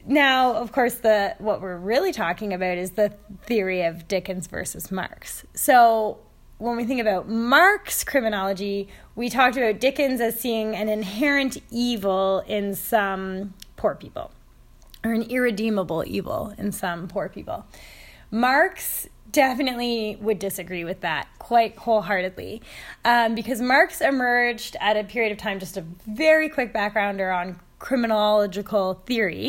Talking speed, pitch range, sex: 140 wpm, 200-255 Hz, female